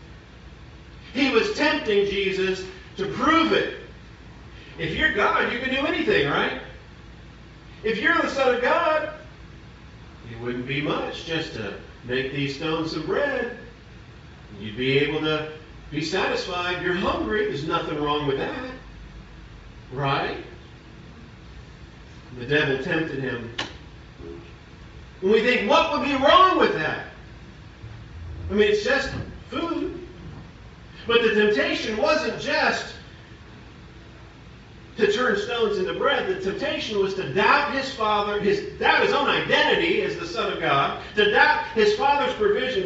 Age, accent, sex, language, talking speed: 50-69, American, male, English, 135 wpm